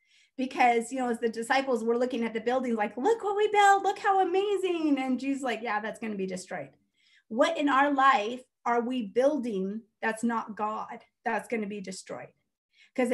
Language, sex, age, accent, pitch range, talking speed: English, female, 30-49, American, 230-290 Hz, 200 wpm